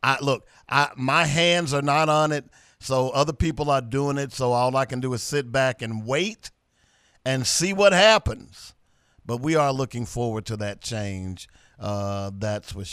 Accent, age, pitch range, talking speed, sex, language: American, 50-69, 120-175 Hz, 185 wpm, male, English